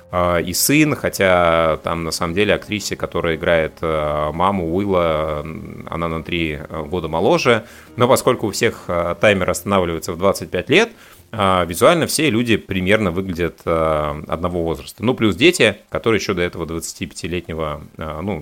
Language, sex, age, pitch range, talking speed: Russian, male, 30-49, 85-100 Hz, 135 wpm